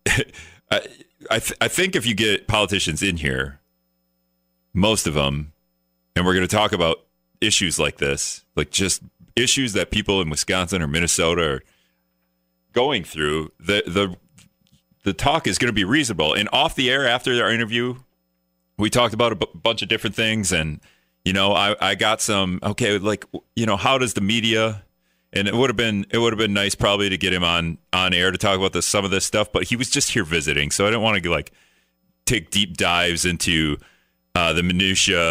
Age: 40-59